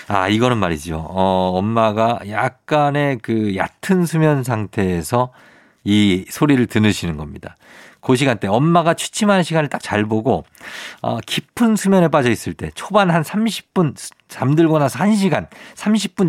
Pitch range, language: 100-170 Hz, Korean